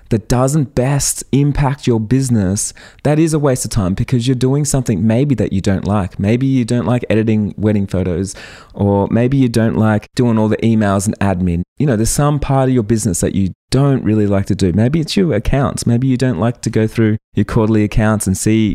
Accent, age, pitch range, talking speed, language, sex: Australian, 20-39, 100-135 Hz, 225 wpm, English, male